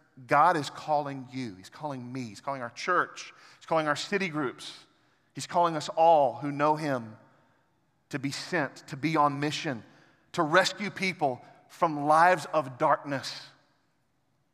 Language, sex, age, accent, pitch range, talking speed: English, male, 40-59, American, 125-155 Hz, 155 wpm